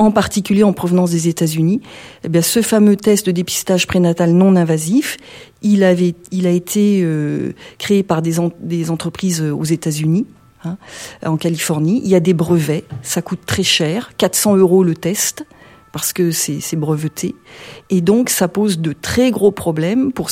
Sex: female